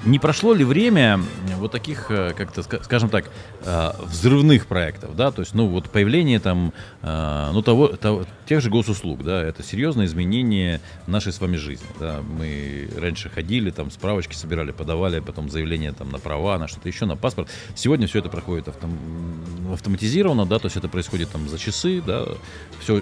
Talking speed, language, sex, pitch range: 170 wpm, Russian, male, 90-120 Hz